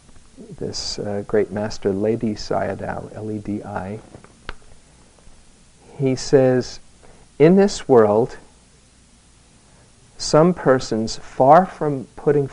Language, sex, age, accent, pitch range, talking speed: English, male, 50-69, American, 105-135 Hz, 80 wpm